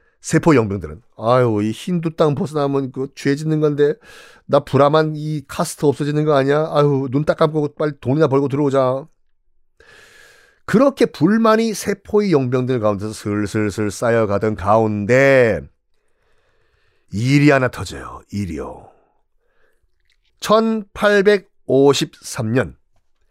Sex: male